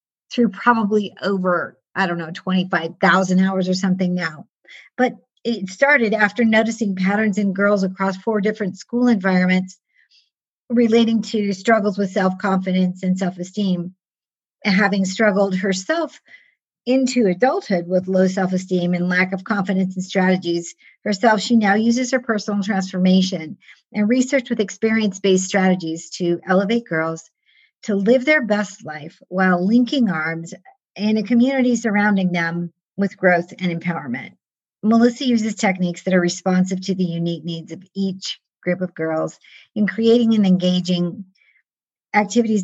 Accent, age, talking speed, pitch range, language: American, 50-69, 135 wpm, 185-225 Hz, English